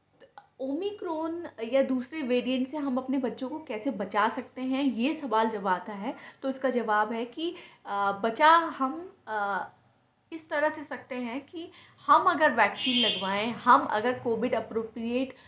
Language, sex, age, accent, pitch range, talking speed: Hindi, female, 20-39, native, 220-285 Hz, 150 wpm